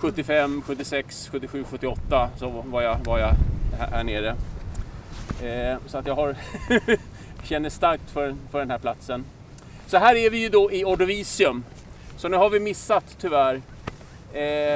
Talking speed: 160 wpm